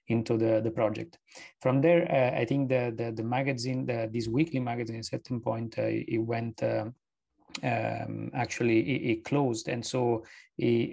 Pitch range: 120-140 Hz